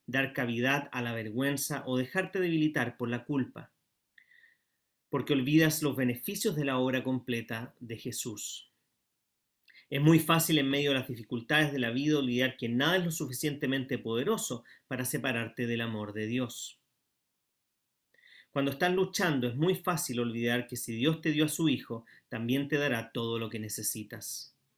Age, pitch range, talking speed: 40-59, 120-155 Hz, 160 wpm